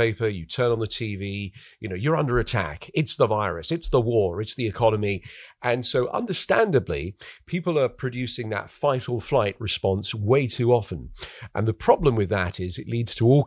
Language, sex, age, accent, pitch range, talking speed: English, male, 40-59, British, 105-135 Hz, 190 wpm